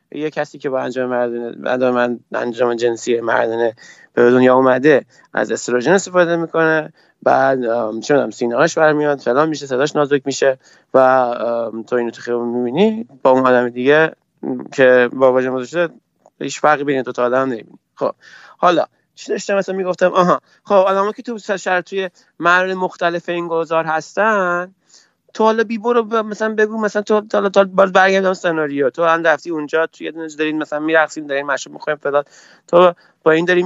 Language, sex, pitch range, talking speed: Persian, male, 135-190 Hz, 165 wpm